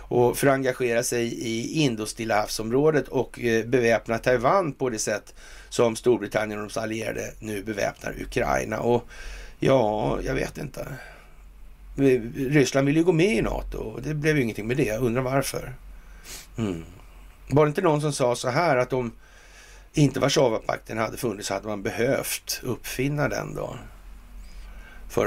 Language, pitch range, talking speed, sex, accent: Swedish, 80-125 Hz, 155 wpm, male, native